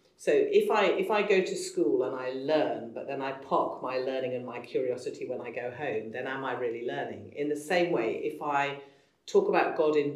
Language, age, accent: English, 40-59, British